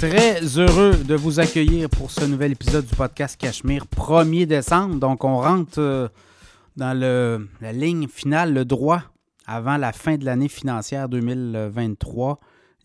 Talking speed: 145 wpm